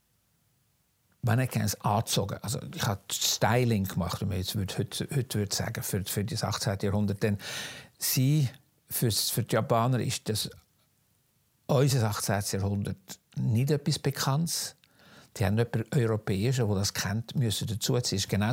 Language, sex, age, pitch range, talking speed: German, male, 60-79, 105-135 Hz, 135 wpm